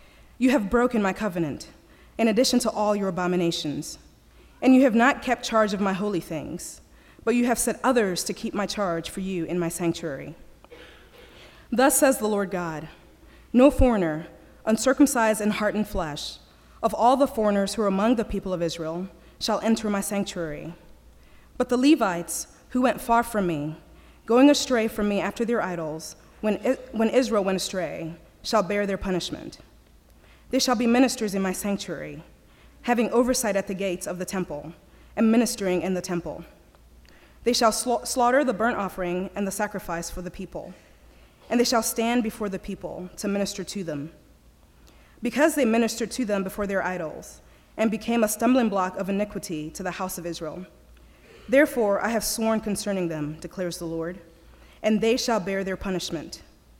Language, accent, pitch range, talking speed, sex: English, American, 170-230 Hz, 175 wpm, female